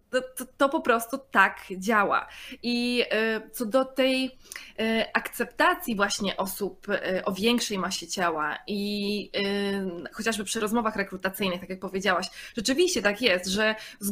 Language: Polish